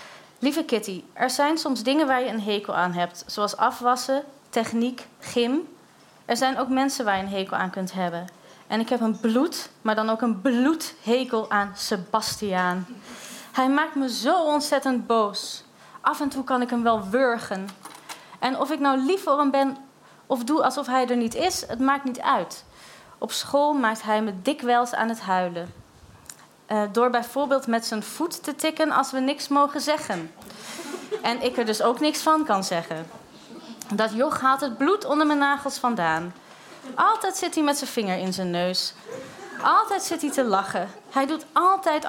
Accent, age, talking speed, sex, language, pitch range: Dutch, 30-49, 185 wpm, female, Dutch, 215-280 Hz